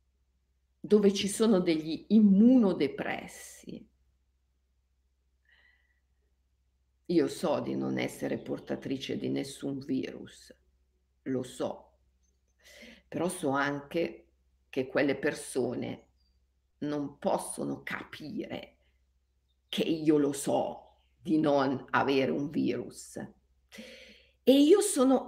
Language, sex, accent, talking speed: Italian, female, native, 90 wpm